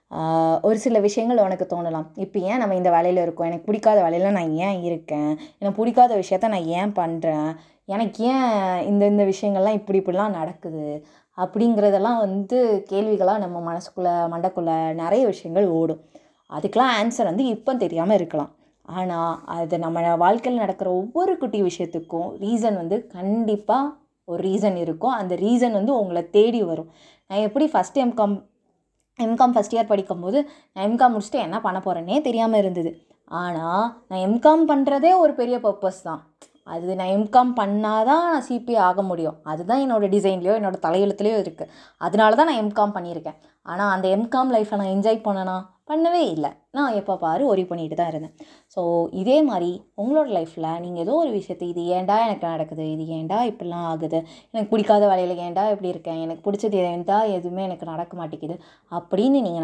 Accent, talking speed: native, 160 wpm